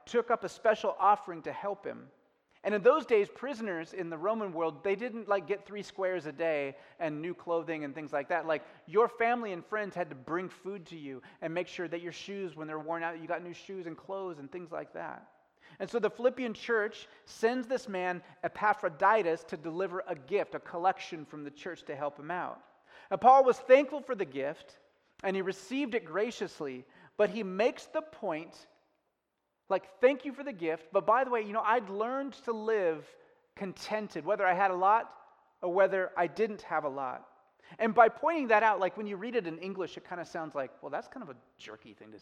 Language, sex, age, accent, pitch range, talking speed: English, male, 30-49, American, 165-225 Hz, 220 wpm